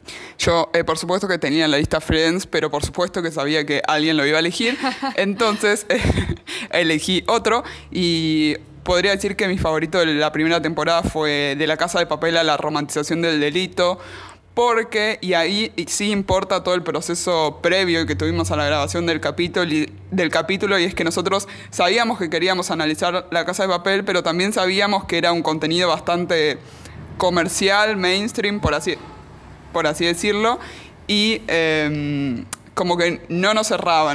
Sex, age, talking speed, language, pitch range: male, 20-39, 175 wpm, Spanish, 155-195 Hz